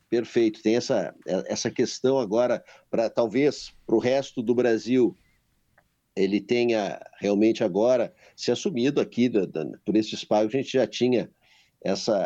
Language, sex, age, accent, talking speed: Portuguese, male, 50-69, Brazilian, 145 wpm